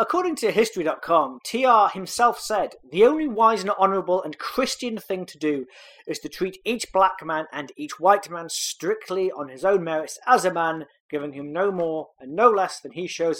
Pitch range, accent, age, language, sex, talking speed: 150-190 Hz, British, 30-49, English, male, 195 wpm